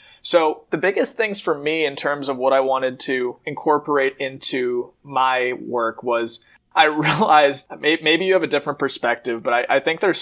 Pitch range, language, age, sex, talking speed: 120-150 Hz, English, 20-39, male, 180 wpm